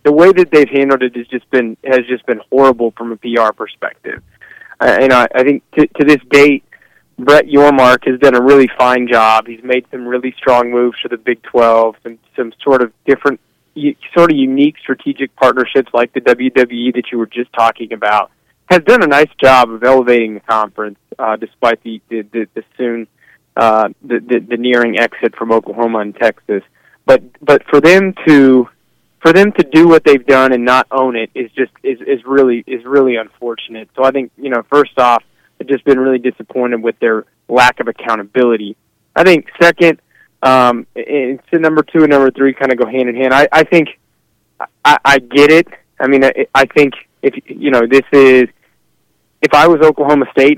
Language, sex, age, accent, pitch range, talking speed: English, male, 20-39, American, 120-140 Hz, 200 wpm